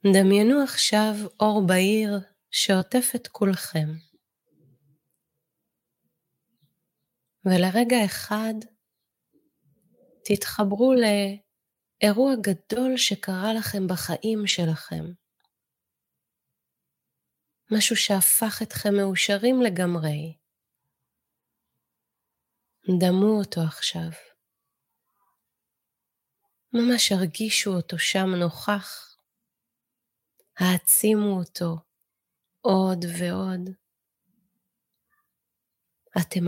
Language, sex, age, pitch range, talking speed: Hebrew, female, 20-39, 180-220 Hz, 55 wpm